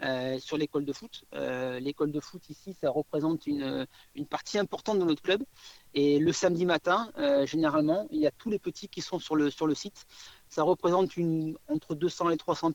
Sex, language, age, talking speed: male, French, 40-59, 215 wpm